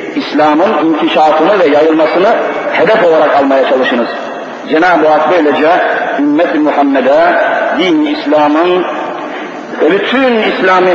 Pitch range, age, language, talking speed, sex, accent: 175-235 Hz, 50-69, Turkish, 100 wpm, male, native